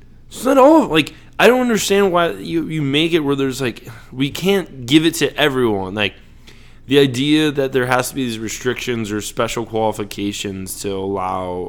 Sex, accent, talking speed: male, American, 190 wpm